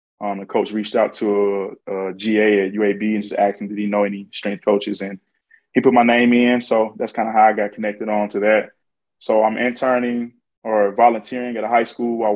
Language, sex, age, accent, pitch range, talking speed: English, male, 20-39, American, 105-115 Hz, 235 wpm